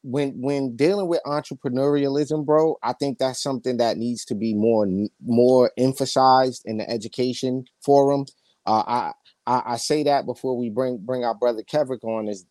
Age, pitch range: 30-49, 115-145 Hz